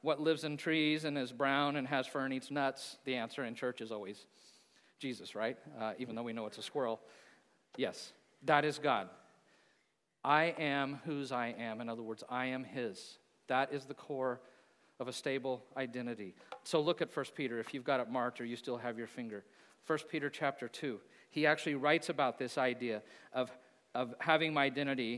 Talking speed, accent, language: 200 wpm, American, English